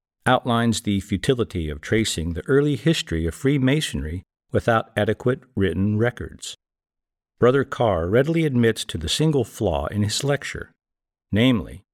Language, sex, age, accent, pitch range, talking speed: English, male, 50-69, American, 90-125 Hz, 130 wpm